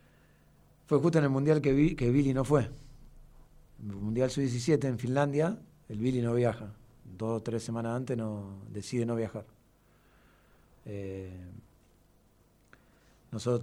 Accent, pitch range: Argentinian, 110-130 Hz